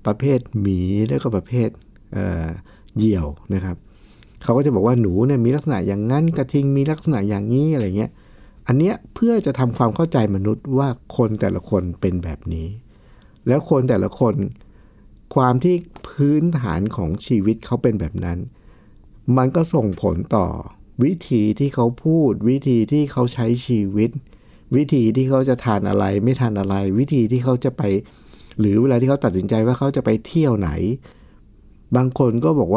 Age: 60-79